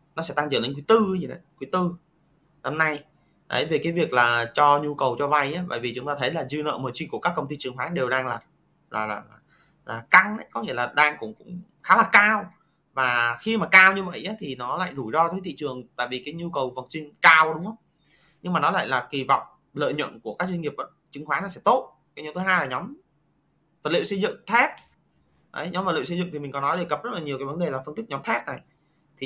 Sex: male